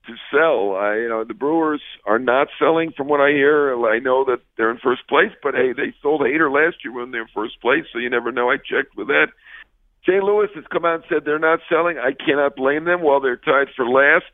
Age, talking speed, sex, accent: 50-69, 260 wpm, male, American